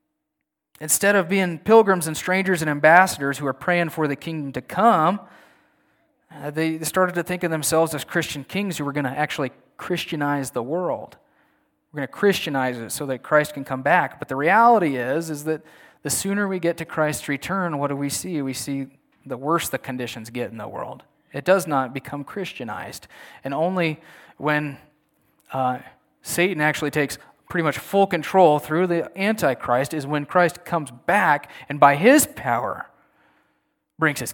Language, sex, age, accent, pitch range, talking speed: English, male, 30-49, American, 145-185 Hz, 175 wpm